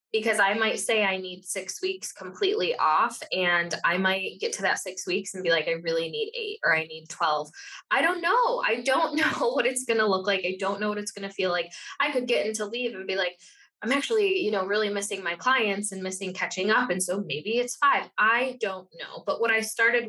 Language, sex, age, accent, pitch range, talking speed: English, female, 10-29, American, 185-285 Hz, 240 wpm